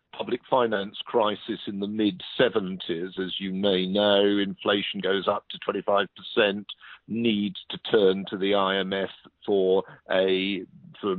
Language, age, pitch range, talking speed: English, 50-69, 100-130 Hz, 140 wpm